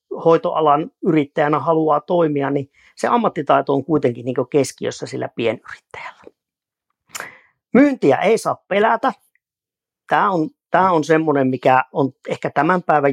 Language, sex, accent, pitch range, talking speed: Finnish, male, native, 140-185 Hz, 125 wpm